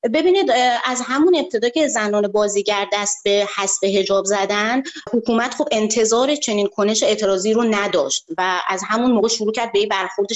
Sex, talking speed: female, 160 wpm